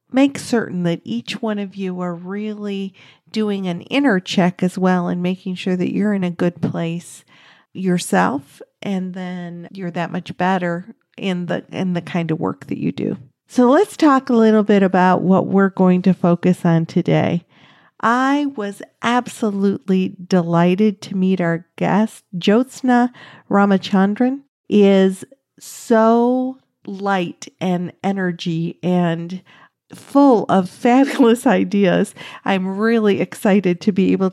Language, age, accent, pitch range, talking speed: English, 50-69, American, 180-240 Hz, 140 wpm